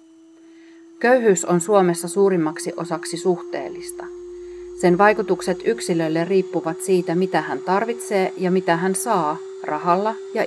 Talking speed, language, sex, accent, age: 115 wpm, Finnish, female, native, 30-49